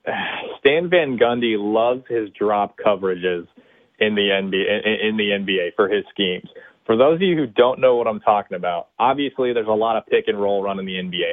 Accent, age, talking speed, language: American, 20-39, 195 wpm, English